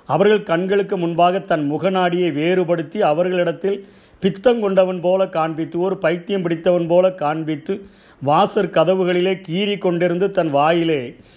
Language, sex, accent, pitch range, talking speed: Tamil, male, native, 155-185 Hz, 115 wpm